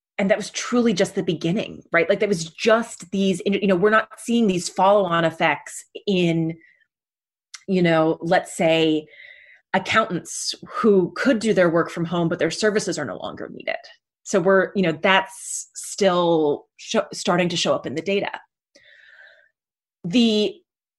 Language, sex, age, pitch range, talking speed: English, female, 30-49, 170-210 Hz, 155 wpm